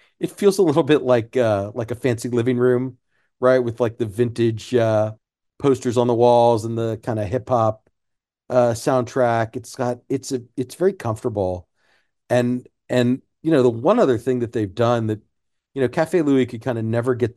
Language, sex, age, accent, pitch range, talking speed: English, male, 40-59, American, 110-125 Hz, 200 wpm